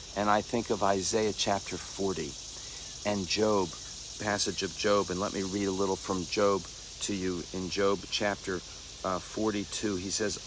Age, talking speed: 50-69, 165 wpm